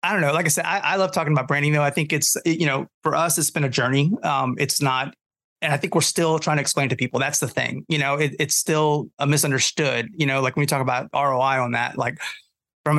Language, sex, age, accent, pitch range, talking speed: English, male, 30-49, American, 130-150 Hz, 275 wpm